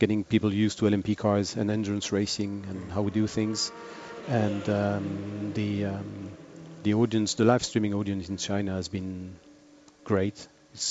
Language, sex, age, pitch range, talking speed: English, male, 40-59, 105-125 Hz, 165 wpm